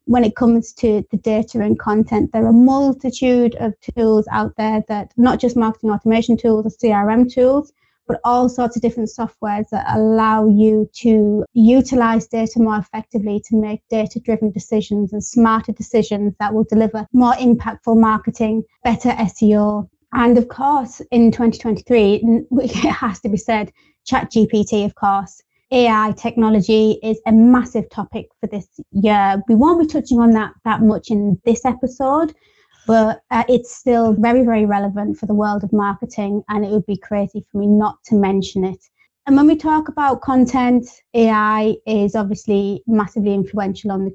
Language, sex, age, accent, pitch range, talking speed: English, female, 20-39, British, 210-240 Hz, 170 wpm